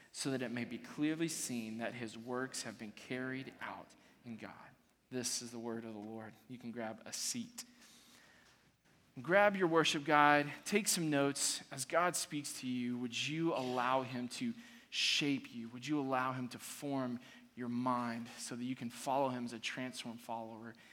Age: 20-39